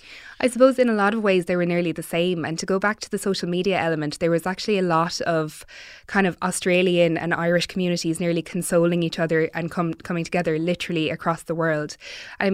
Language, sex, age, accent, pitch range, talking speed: English, female, 20-39, Irish, 155-180 Hz, 220 wpm